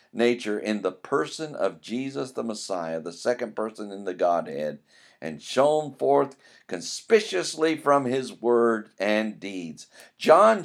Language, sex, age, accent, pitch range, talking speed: English, male, 50-69, American, 110-160 Hz, 135 wpm